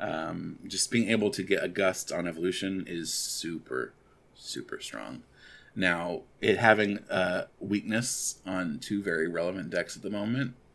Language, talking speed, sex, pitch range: English, 150 wpm, male, 95-120 Hz